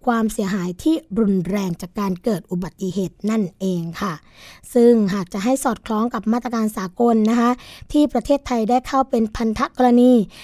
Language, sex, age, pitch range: Thai, female, 20-39, 205-260 Hz